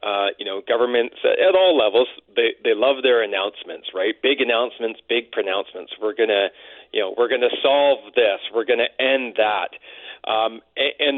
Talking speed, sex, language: 185 wpm, male, English